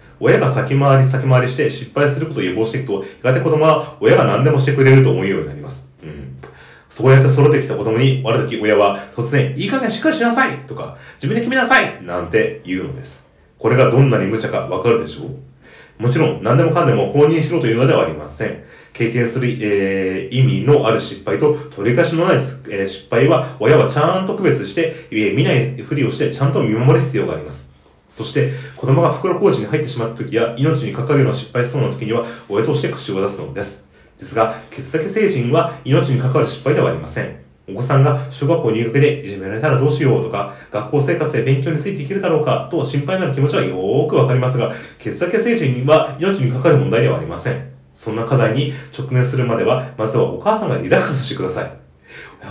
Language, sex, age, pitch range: Japanese, male, 40-59, 115-155 Hz